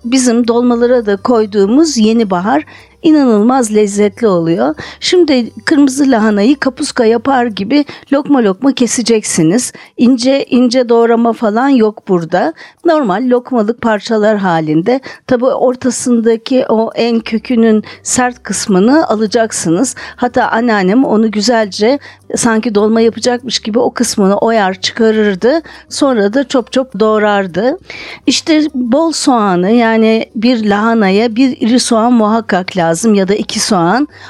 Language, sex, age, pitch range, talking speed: Turkish, female, 50-69, 215-270 Hz, 120 wpm